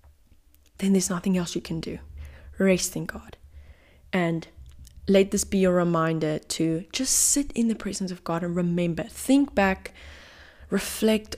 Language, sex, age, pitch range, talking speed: English, female, 20-39, 155-195 Hz, 155 wpm